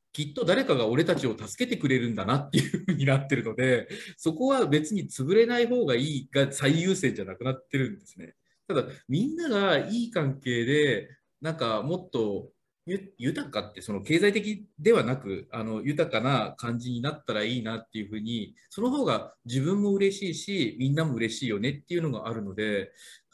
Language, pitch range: Japanese, 120-185 Hz